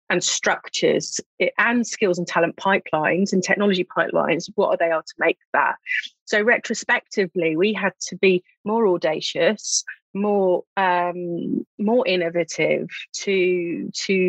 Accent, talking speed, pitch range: British, 130 wpm, 175-220 Hz